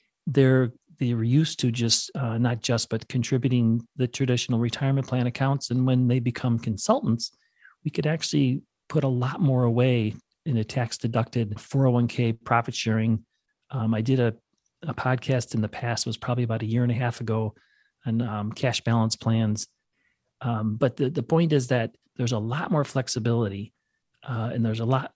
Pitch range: 115-130 Hz